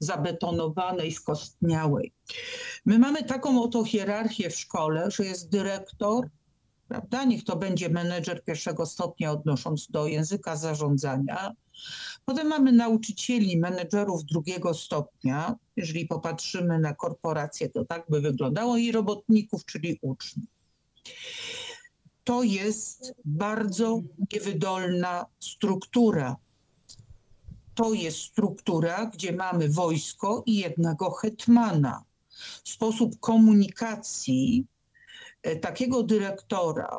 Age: 50-69